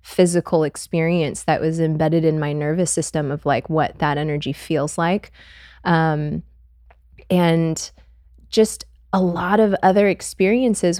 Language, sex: English, female